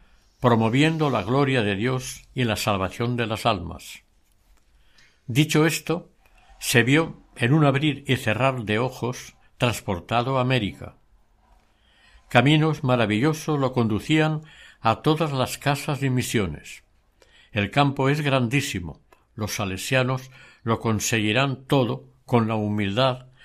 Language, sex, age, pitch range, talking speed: Spanish, male, 60-79, 110-140 Hz, 120 wpm